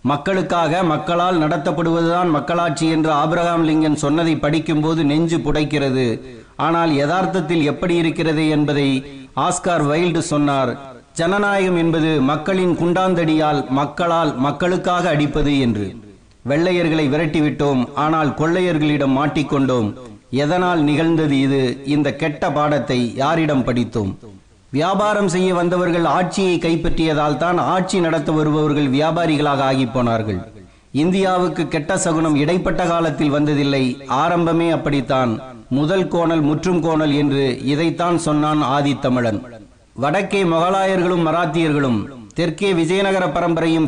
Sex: male